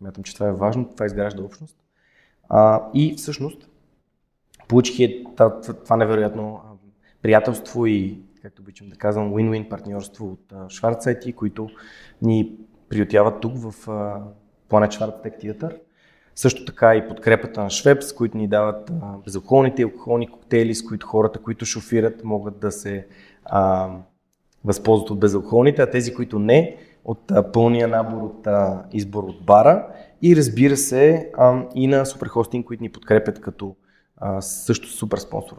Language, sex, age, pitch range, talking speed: Bulgarian, male, 20-39, 105-120 Hz, 150 wpm